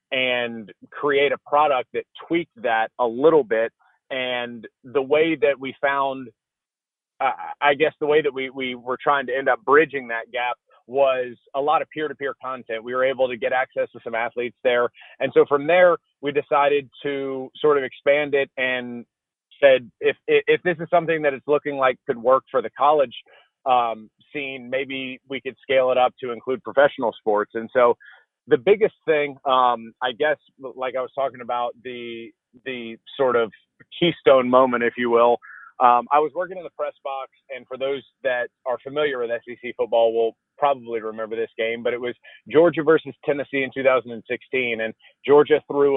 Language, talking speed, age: English, 185 wpm, 30-49